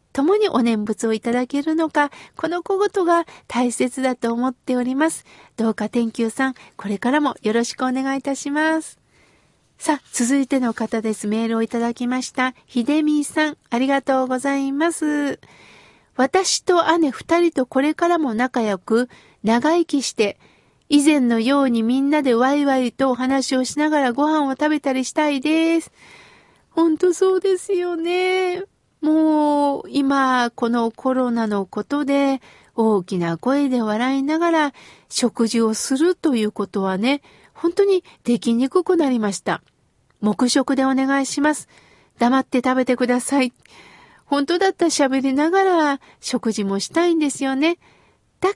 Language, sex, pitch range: Japanese, female, 240-310 Hz